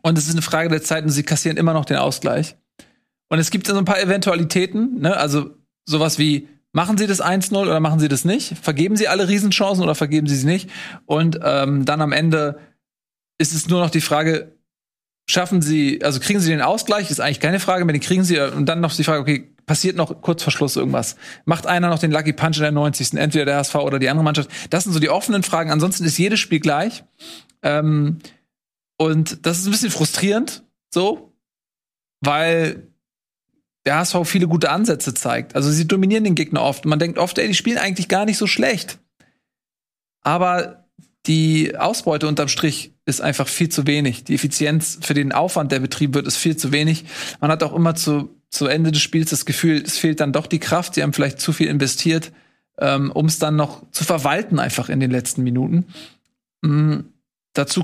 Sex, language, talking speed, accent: male, German, 210 wpm, German